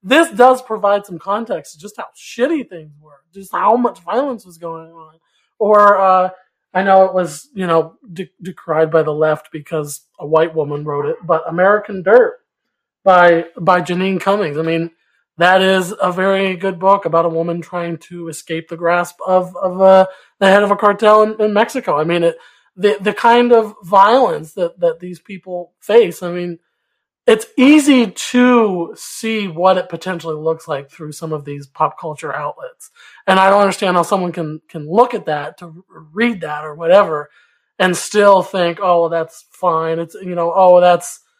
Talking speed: 185 wpm